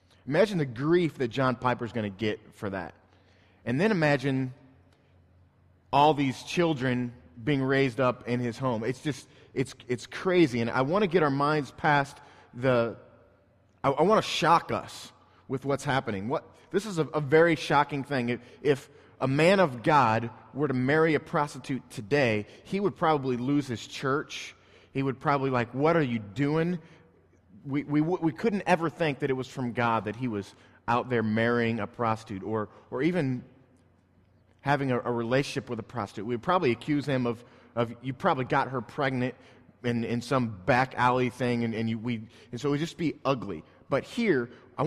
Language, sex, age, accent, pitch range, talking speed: English, male, 30-49, American, 115-150 Hz, 185 wpm